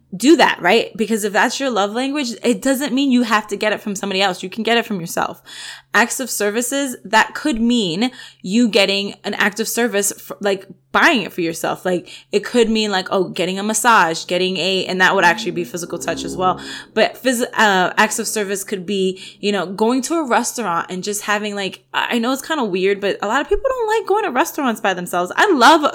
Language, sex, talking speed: English, female, 230 wpm